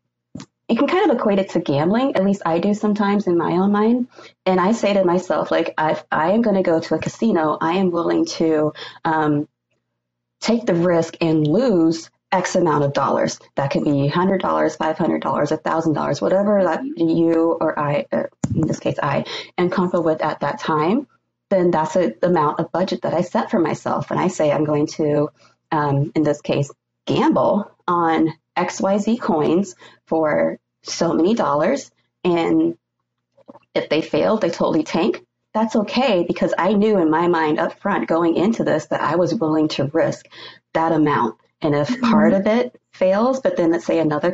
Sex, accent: female, American